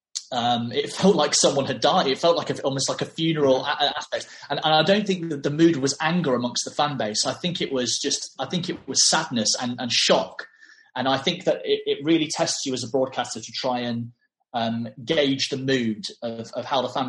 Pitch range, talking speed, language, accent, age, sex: 120-145 Hz, 235 wpm, English, British, 30-49, male